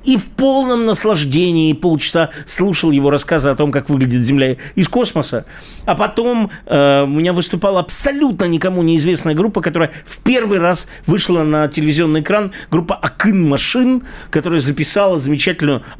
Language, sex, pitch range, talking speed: Russian, male, 150-195 Hz, 145 wpm